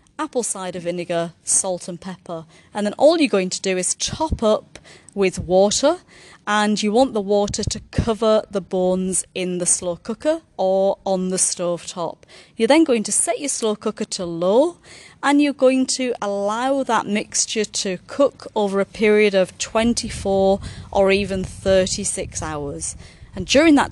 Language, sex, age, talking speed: English, female, 30-49, 165 wpm